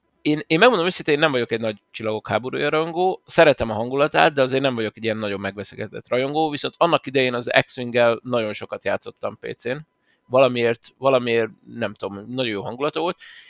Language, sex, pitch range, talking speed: Hungarian, male, 110-135 Hz, 185 wpm